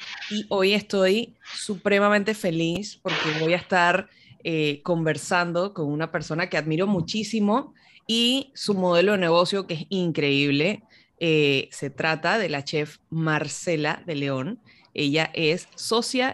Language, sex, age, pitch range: Spanish, female, 20-39, 155-205 Hz